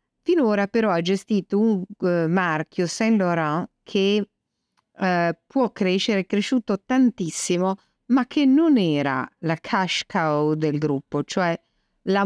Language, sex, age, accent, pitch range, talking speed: Italian, female, 50-69, native, 160-215 Hz, 120 wpm